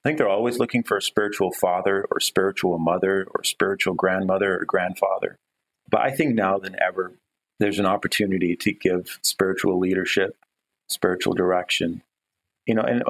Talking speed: 160 wpm